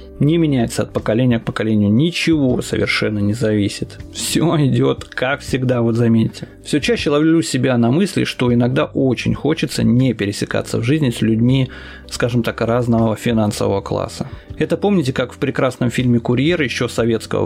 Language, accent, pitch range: Russian, native, 110-135 Hz